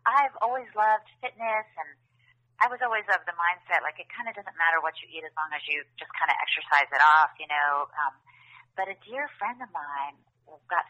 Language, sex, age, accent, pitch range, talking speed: English, female, 30-49, American, 155-220 Hz, 220 wpm